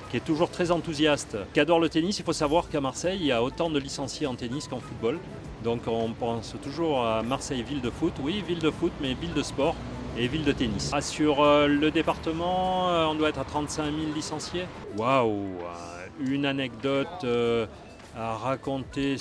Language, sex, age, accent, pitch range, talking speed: French, male, 40-59, French, 115-145 Hz, 185 wpm